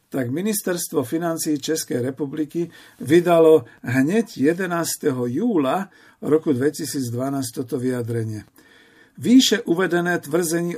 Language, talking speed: Slovak, 90 wpm